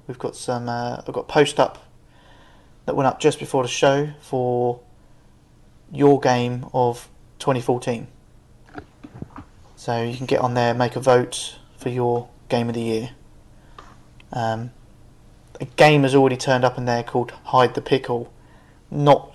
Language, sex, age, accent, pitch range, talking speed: English, male, 20-39, British, 120-145 Hz, 155 wpm